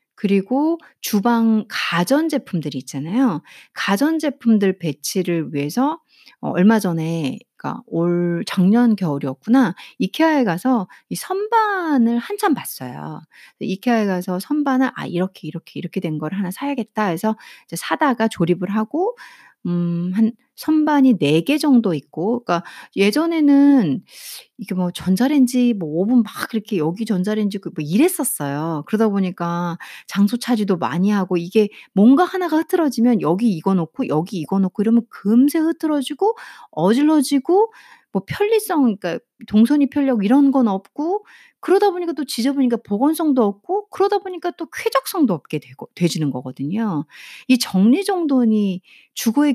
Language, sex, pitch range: Korean, female, 180-285 Hz